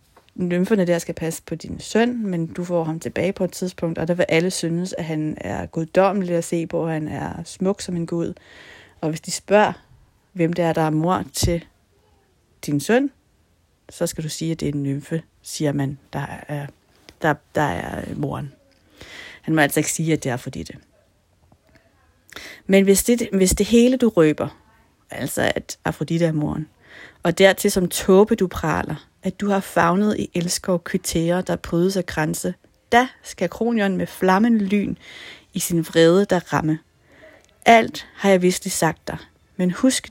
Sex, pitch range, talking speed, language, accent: female, 155-190 Hz, 185 wpm, Danish, native